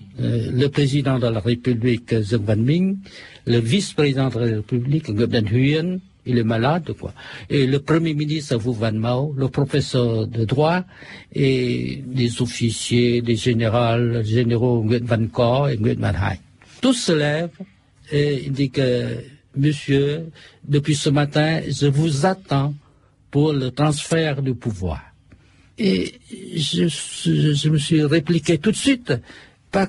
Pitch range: 120-155 Hz